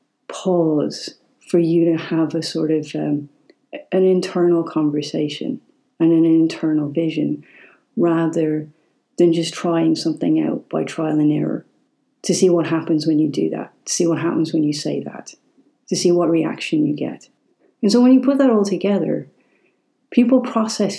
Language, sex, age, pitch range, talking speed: English, female, 40-59, 160-190 Hz, 165 wpm